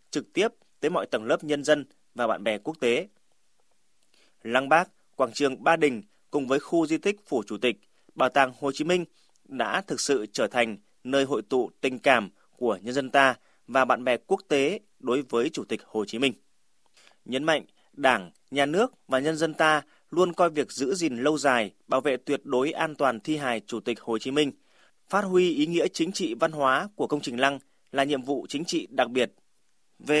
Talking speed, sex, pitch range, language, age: 215 wpm, male, 135-165 Hz, Vietnamese, 20-39